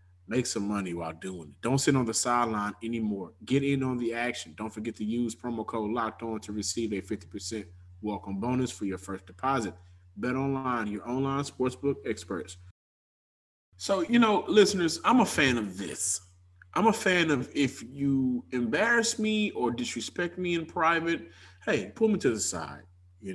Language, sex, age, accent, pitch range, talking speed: English, male, 20-39, American, 90-130 Hz, 180 wpm